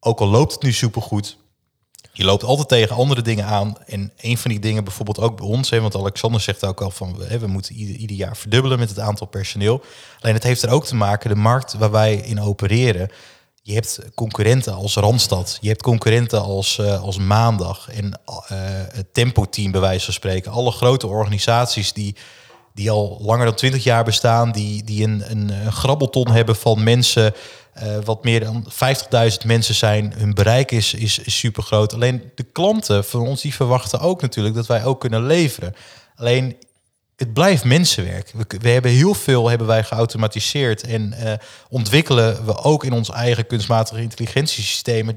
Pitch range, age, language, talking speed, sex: 105-120 Hz, 30-49, Dutch, 185 wpm, male